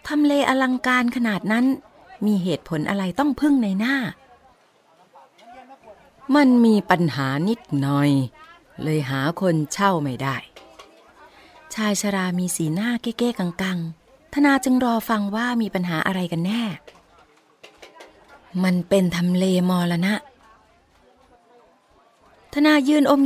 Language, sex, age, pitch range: Thai, female, 30-49, 170-245 Hz